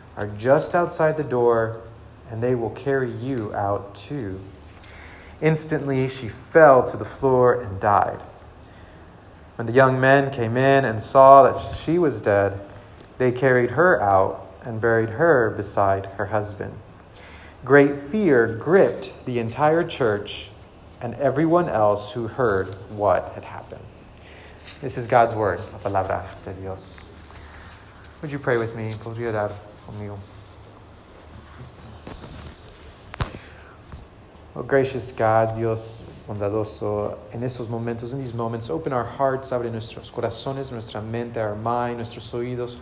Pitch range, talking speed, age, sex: 100-130 Hz, 130 wpm, 30-49, male